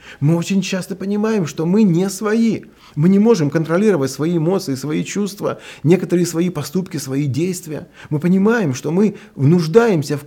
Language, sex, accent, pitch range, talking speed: Russian, male, native, 140-195 Hz, 160 wpm